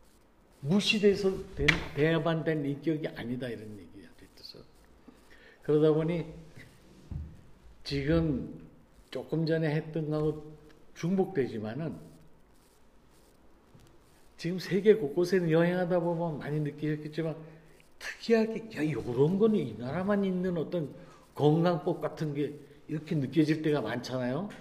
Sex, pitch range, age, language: male, 130-165 Hz, 50-69, Korean